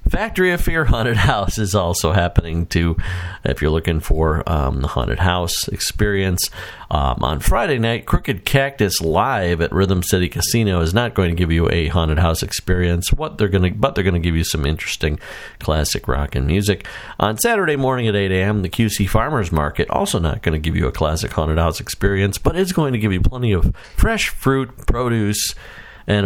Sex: male